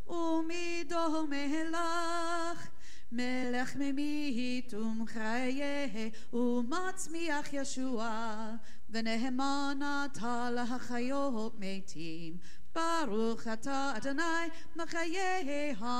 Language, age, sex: English, 40-59, female